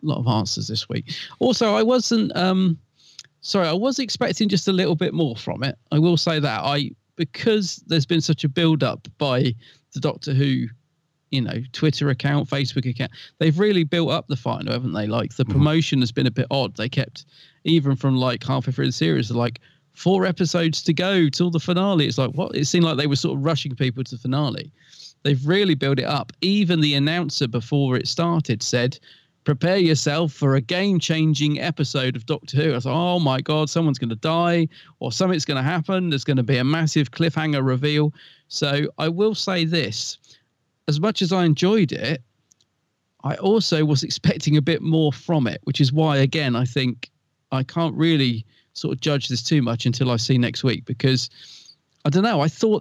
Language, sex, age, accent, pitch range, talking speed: English, male, 40-59, British, 130-165 Hz, 205 wpm